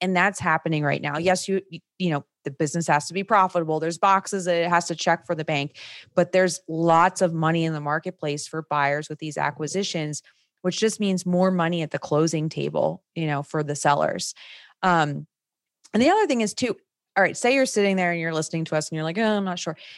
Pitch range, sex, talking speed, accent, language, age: 155-180 Hz, female, 235 wpm, American, English, 20-39